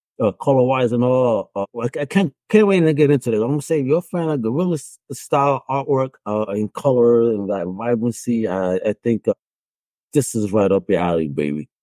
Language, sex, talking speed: English, male, 210 wpm